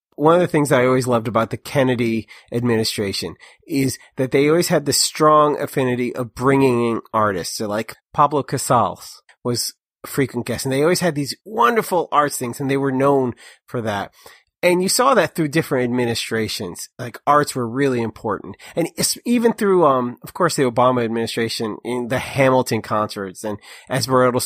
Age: 30-49